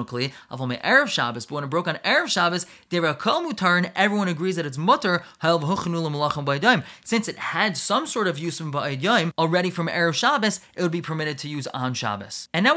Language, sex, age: English, male, 20-39